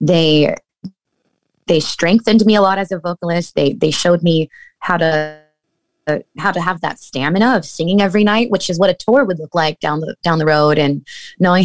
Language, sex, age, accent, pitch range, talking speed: English, female, 20-39, American, 160-210 Hz, 205 wpm